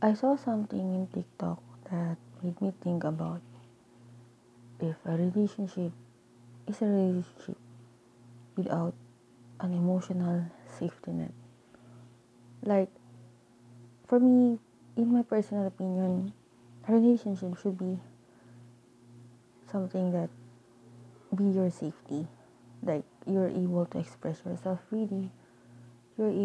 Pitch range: 120-185 Hz